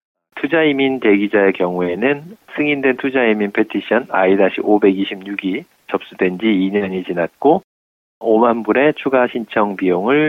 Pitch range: 95-115 Hz